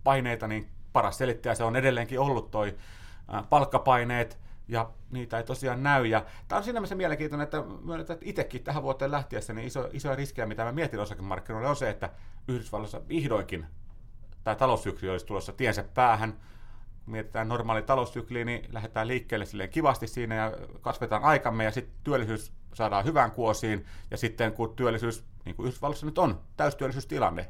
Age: 30-49